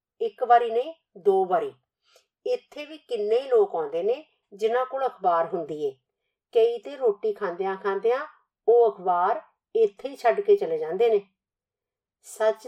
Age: 50-69